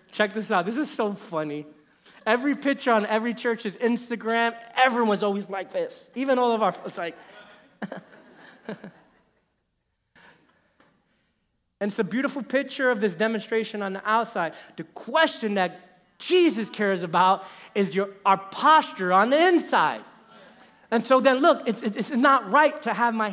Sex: male